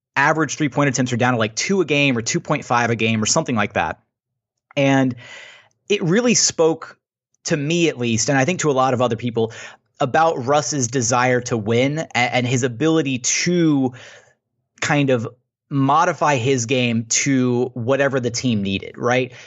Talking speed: 170 wpm